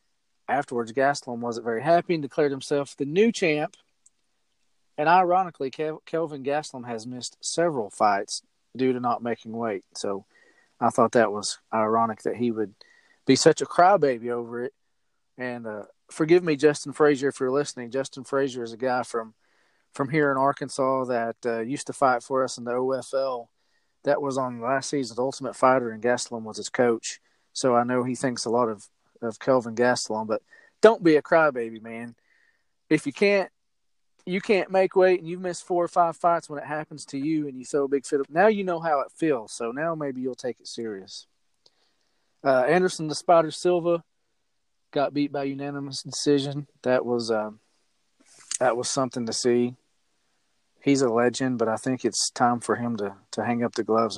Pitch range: 120-150 Hz